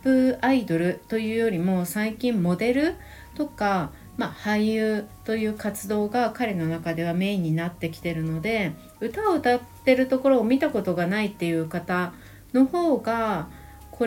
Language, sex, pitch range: Japanese, female, 170-235 Hz